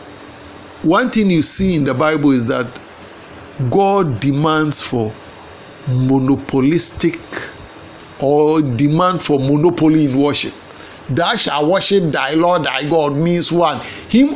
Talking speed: 120 wpm